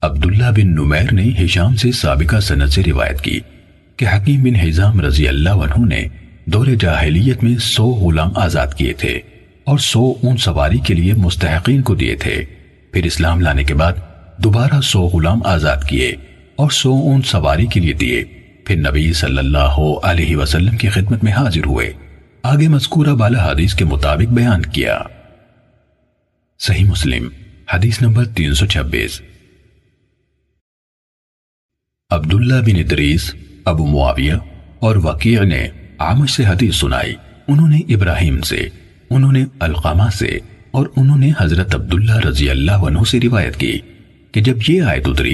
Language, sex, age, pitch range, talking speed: Urdu, male, 50-69, 80-120 Hz, 110 wpm